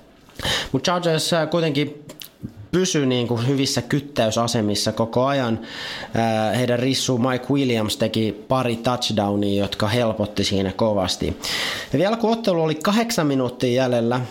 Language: Finnish